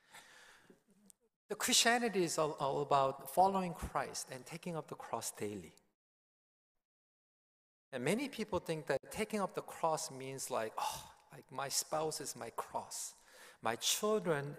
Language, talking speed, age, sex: English, 135 wpm, 40-59, male